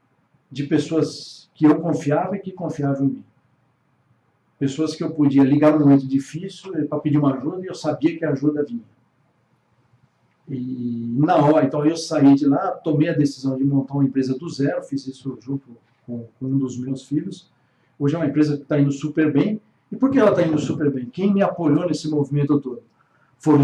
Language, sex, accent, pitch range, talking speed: Portuguese, male, Brazilian, 135-160 Hz, 200 wpm